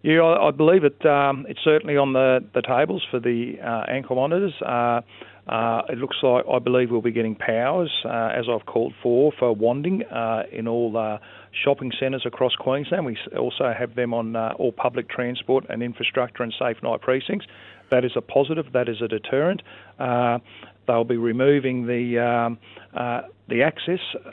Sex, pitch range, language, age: male, 115-135 Hz, English, 40-59